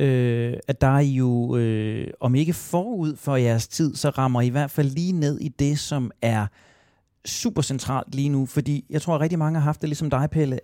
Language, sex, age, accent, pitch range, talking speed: Danish, male, 30-49, native, 115-150 Hz, 230 wpm